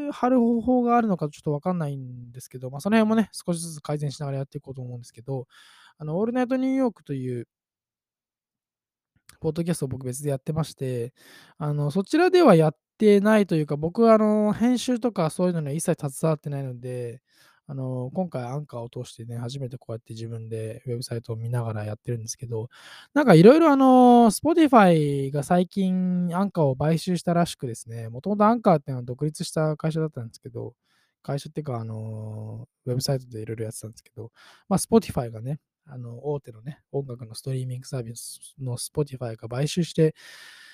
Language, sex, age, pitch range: Japanese, male, 20-39, 125-205 Hz